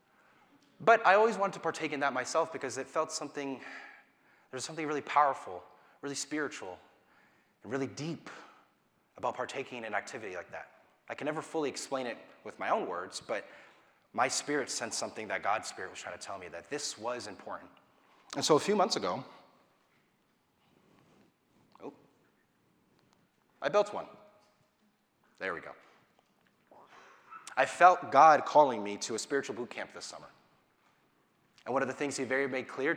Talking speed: 165 wpm